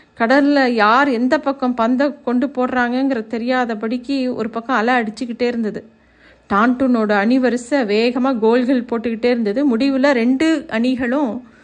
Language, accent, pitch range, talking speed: Tamil, native, 225-270 Hz, 115 wpm